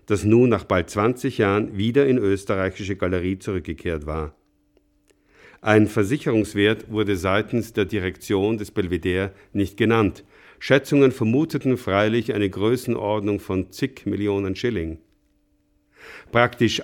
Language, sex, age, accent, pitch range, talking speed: German, male, 50-69, German, 95-120 Hz, 115 wpm